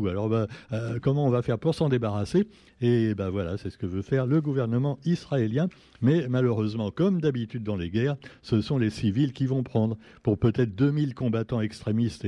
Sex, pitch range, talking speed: male, 105-140 Hz, 195 wpm